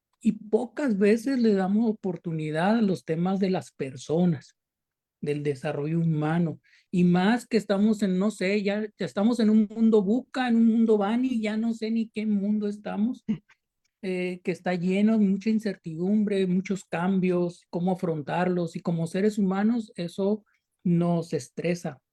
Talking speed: 155 wpm